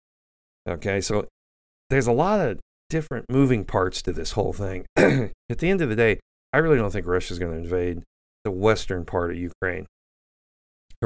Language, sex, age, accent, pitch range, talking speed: English, male, 40-59, American, 85-115 Hz, 185 wpm